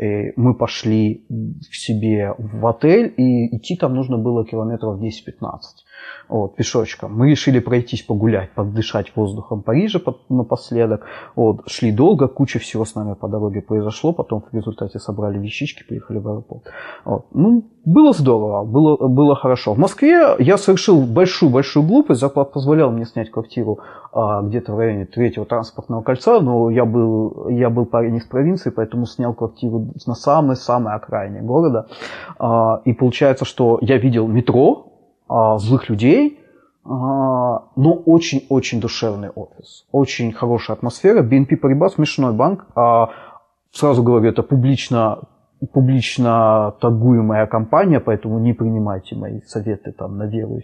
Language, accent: Ukrainian, native